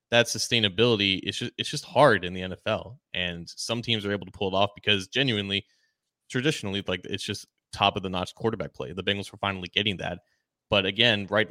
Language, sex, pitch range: English, male, 100-115 Hz